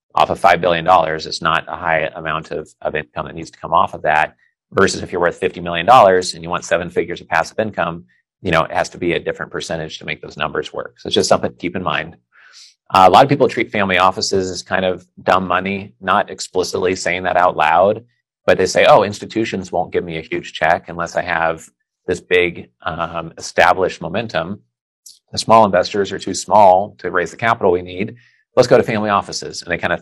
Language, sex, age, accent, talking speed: English, male, 30-49, American, 230 wpm